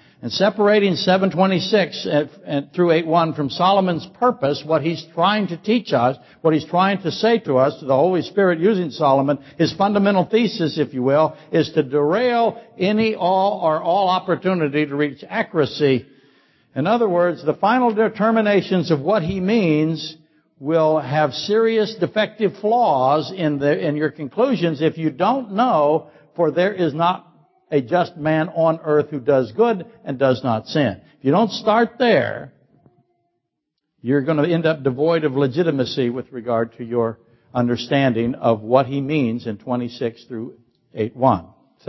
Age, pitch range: 60-79, 135-185 Hz